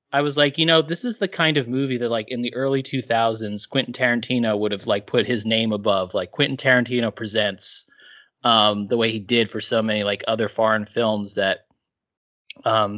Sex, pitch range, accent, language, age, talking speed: male, 110-140 Hz, American, English, 30-49, 205 wpm